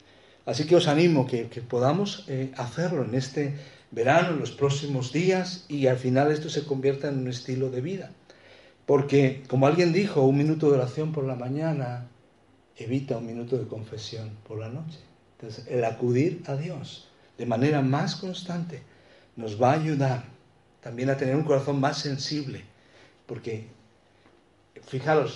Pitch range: 115-150 Hz